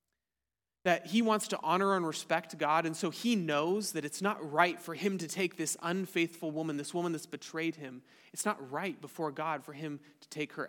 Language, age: English, 30-49